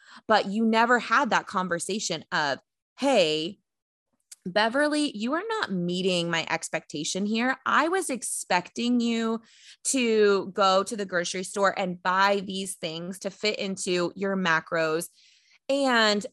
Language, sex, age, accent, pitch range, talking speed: English, female, 20-39, American, 175-235 Hz, 130 wpm